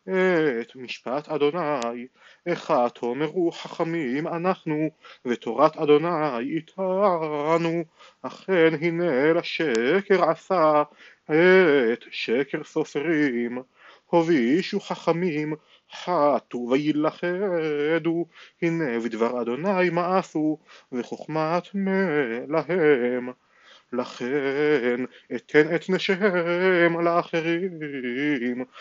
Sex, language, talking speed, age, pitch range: male, Hebrew, 70 wpm, 30-49, 145-175 Hz